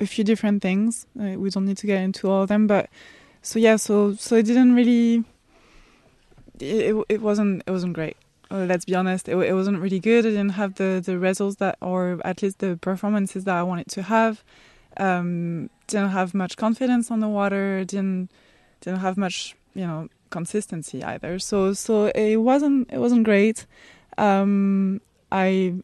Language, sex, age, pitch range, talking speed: English, female, 20-39, 190-220 Hz, 185 wpm